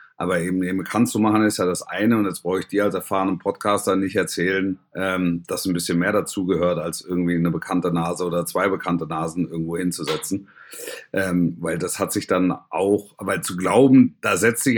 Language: German